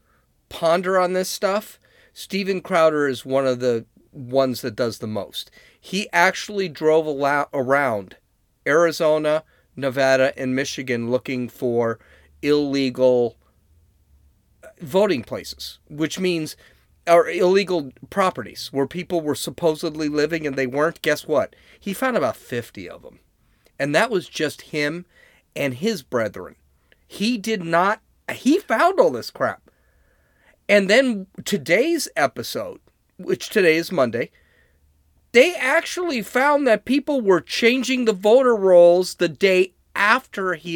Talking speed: 130 wpm